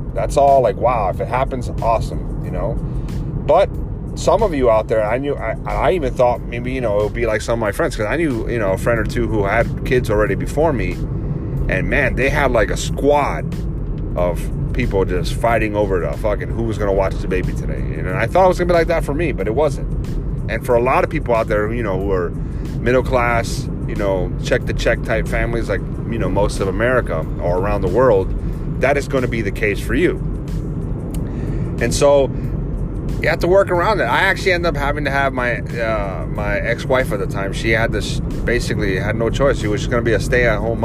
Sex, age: male, 30-49